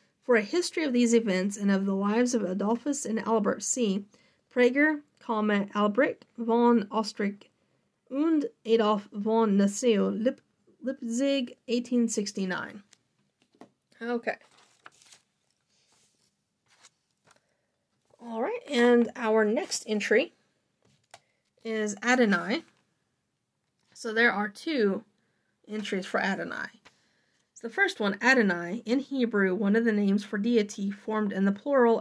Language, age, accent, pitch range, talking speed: English, 30-49, American, 205-245 Hz, 105 wpm